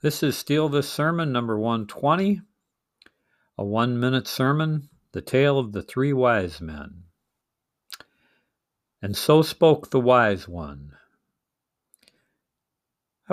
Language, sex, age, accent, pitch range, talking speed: English, male, 50-69, American, 105-145 Hz, 110 wpm